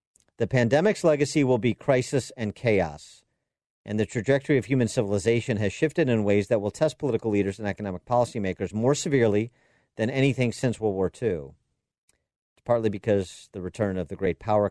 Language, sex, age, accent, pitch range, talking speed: English, male, 50-69, American, 95-125 Hz, 175 wpm